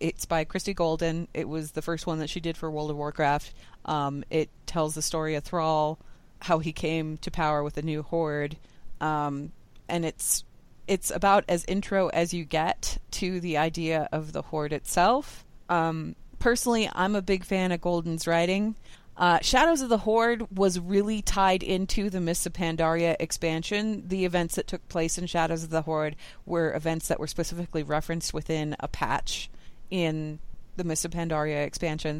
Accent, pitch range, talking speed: American, 155-185 Hz, 180 wpm